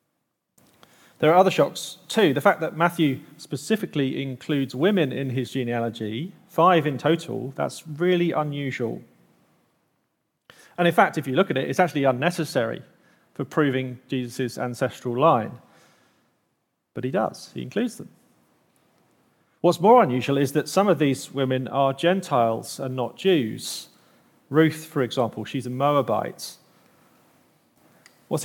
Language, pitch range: English, 125-165 Hz